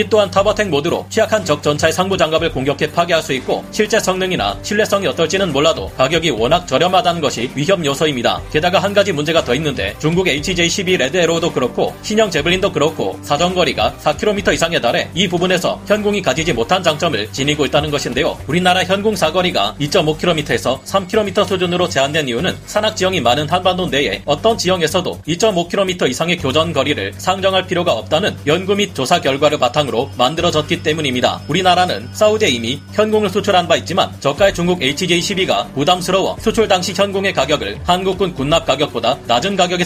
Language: Korean